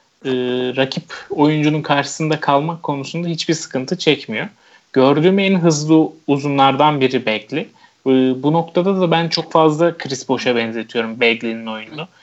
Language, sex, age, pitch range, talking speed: Turkish, male, 30-49, 130-155 Hz, 130 wpm